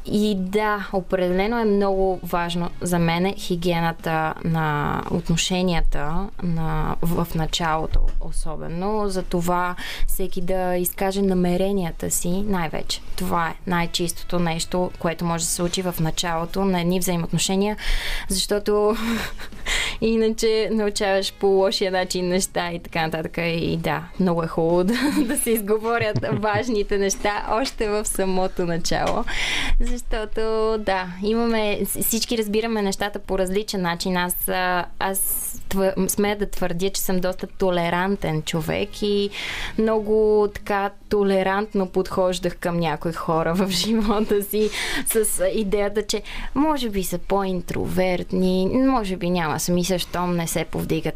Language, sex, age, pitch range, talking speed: Bulgarian, female, 20-39, 175-210 Hz, 125 wpm